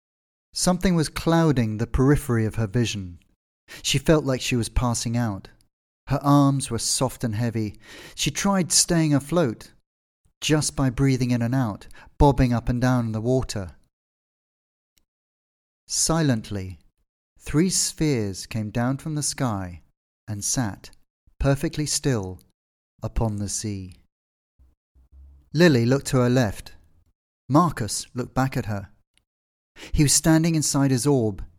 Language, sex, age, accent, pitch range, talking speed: English, male, 40-59, British, 95-135 Hz, 130 wpm